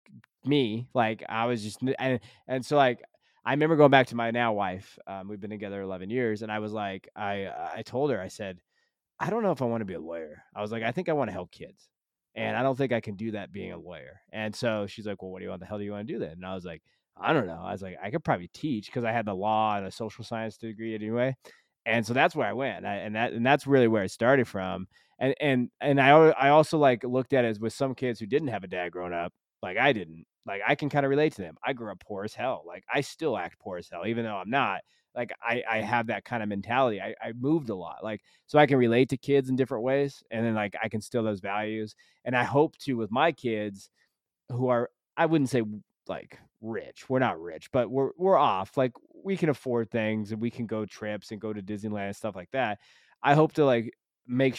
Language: English